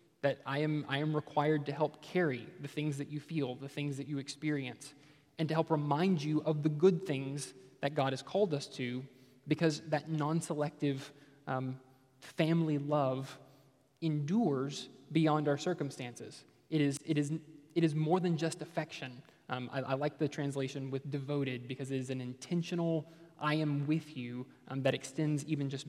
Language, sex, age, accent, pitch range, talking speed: English, male, 20-39, American, 140-160 Hz, 175 wpm